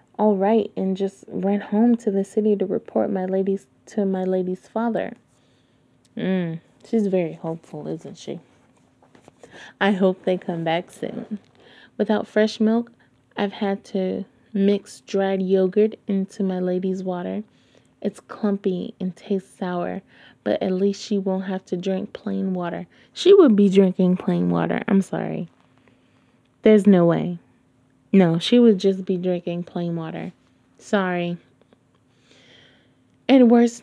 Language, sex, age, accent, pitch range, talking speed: English, female, 20-39, American, 180-210 Hz, 140 wpm